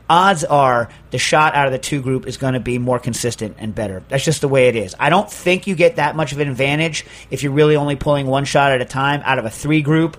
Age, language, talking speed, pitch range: 40-59, English, 270 wpm, 130-155 Hz